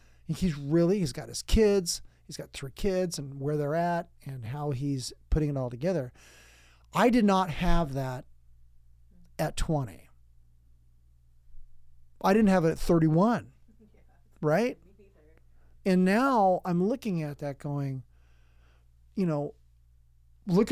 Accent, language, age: American, English, 40-59